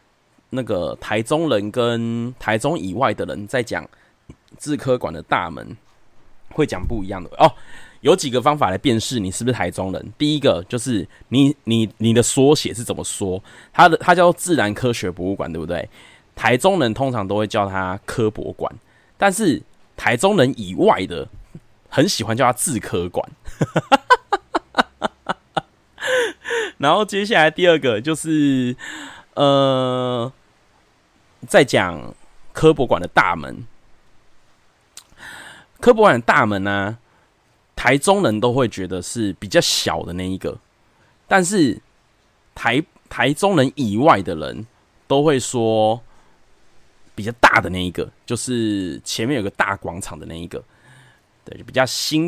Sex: male